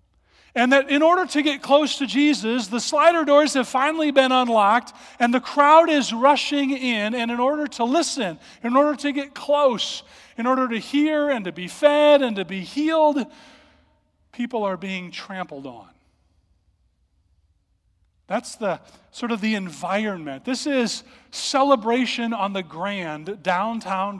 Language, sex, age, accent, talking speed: English, male, 40-59, American, 155 wpm